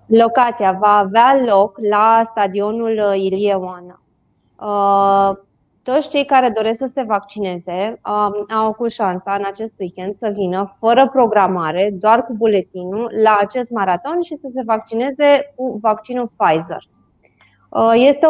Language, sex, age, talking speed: Romanian, female, 20-39, 130 wpm